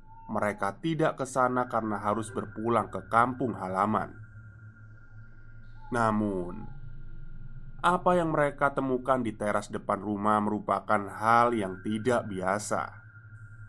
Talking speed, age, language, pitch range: 100 wpm, 20-39, Indonesian, 105-125 Hz